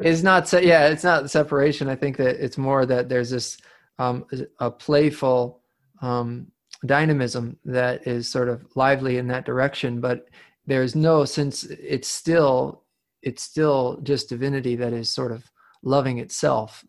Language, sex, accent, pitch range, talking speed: English, male, American, 130-150 Hz, 155 wpm